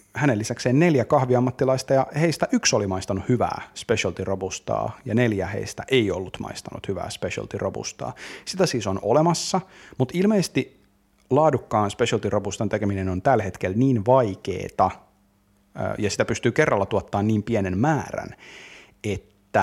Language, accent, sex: Finnish, native, male